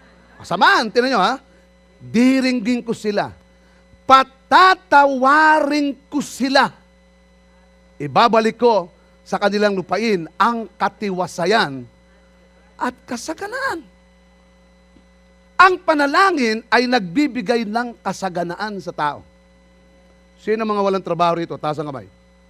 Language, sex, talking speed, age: Filipino, male, 95 wpm, 40-59